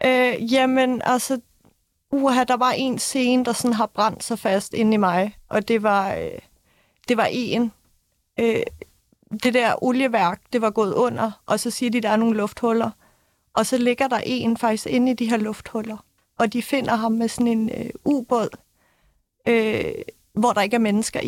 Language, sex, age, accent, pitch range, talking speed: Danish, female, 30-49, native, 215-245 Hz, 190 wpm